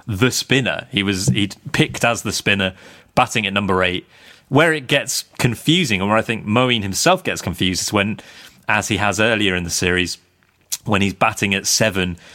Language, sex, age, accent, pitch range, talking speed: English, male, 30-49, British, 95-120 Hz, 190 wpm